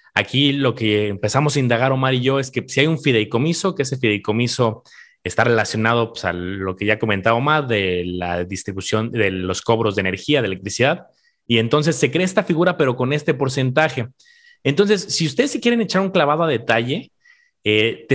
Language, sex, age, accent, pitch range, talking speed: Spanish, male, 30-49, Mexican, 110-150 Hz, 200 wpm